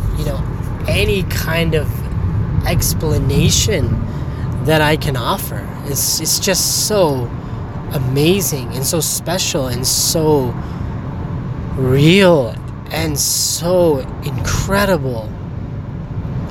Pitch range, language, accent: 125-165 Hz, English, American